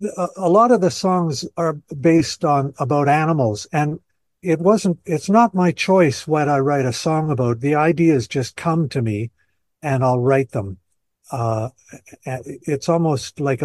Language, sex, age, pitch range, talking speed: English, male, 60-79, 130-180 Hz, 165 wpm